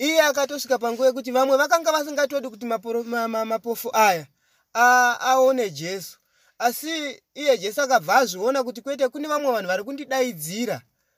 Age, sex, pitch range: 30-49, male, 230-285 Hz